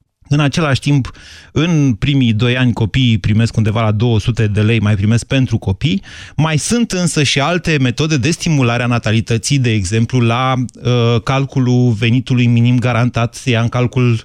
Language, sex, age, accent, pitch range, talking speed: Romanian, male, 30-49, native, 105-140 Hz, 165 wpm